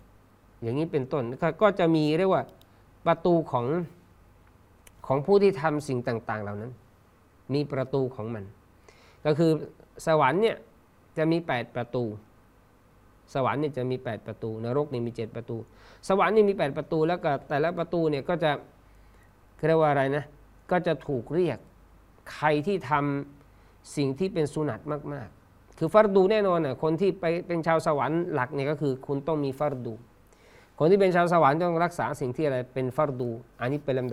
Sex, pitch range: male, 120-160 Hz